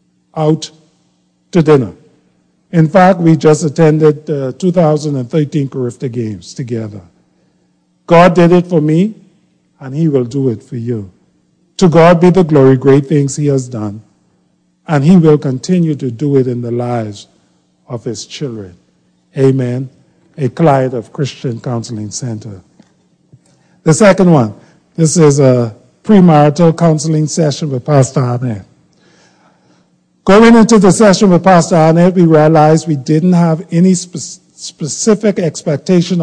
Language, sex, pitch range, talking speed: English, male, 125-170 Hz, 135 wpm